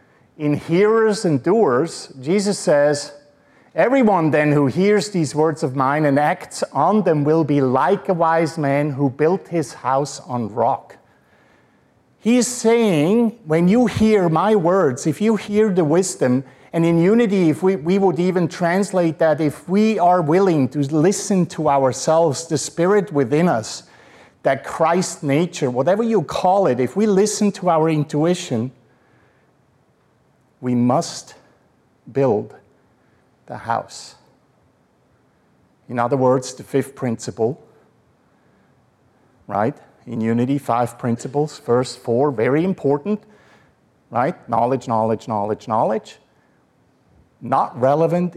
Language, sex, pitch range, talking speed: English, male, 130-185 Hz, 130 wpm